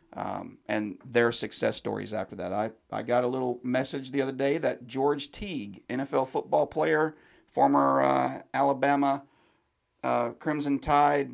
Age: 40-59